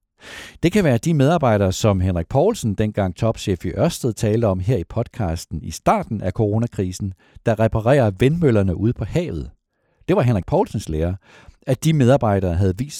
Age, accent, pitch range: 60-79, native, 90-125 Hz